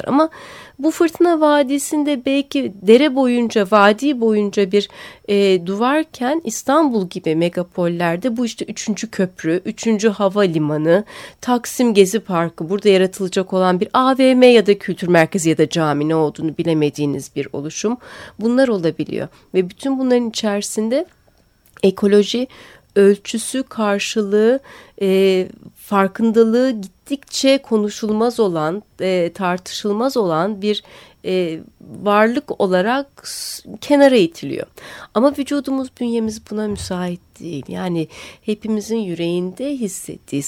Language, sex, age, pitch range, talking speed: Turkish, female, 30-49, 180-235 Hz, 110 wpm